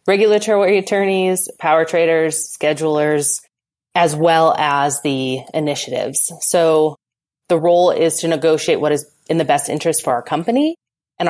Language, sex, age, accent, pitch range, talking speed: English, female, 20-39, American, 145-190 Hz, 140 wpm